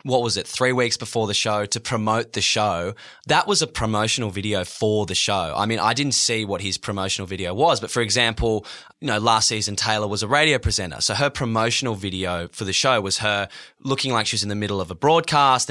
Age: 20-39